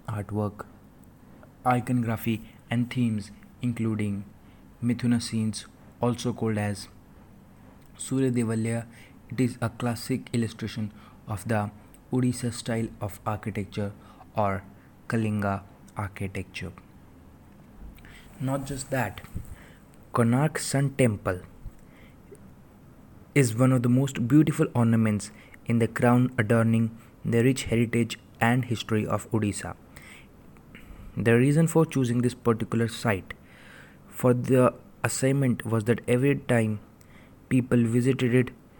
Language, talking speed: English, 105 wpm